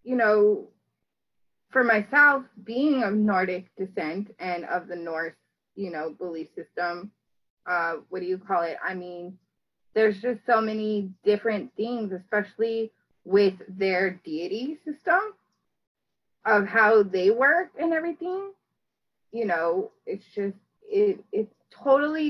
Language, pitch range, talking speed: English, 190-250 Hz, 130 wpm